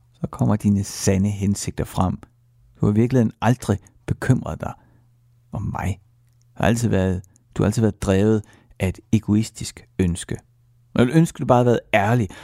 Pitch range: 100-120 Hz